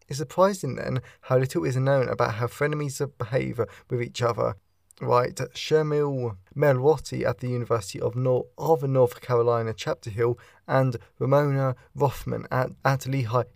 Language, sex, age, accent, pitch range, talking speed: English, male, 20-39, British, 120-145 Hz, 140 wpm